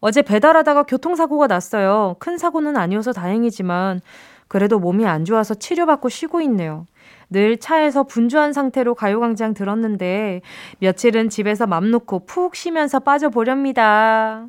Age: 20-39